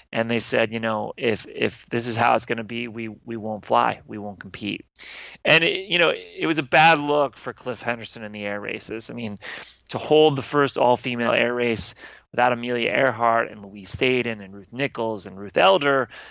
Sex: male